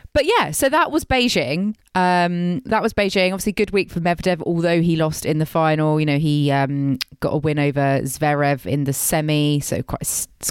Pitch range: 145-200 Hz